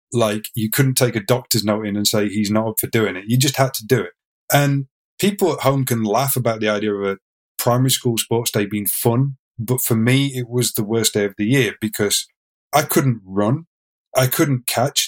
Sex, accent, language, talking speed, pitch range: male, British, English, 225 wpm, 110-130 Hz